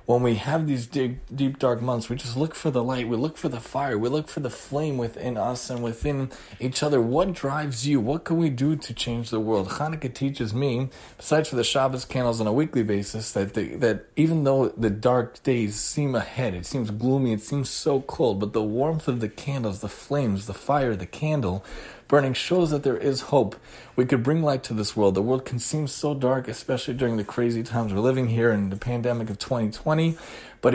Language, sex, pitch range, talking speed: English, male, 110-140 Hz, 225 wpm